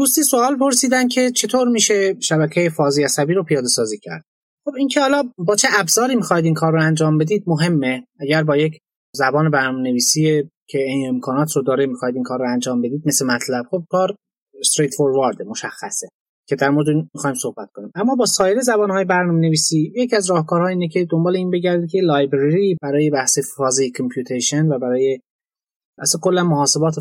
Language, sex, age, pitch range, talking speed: Persian, male, 30-49, 135-185 Hz, 175 wpm